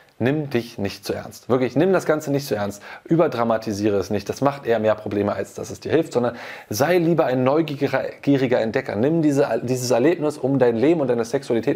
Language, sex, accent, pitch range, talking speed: German, male, German, 105-140 Hz, 210 wpm